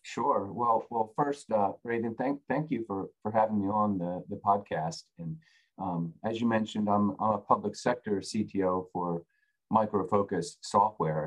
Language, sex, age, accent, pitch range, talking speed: English, male, 40-59, American, 90-110 Hz, 170 wpm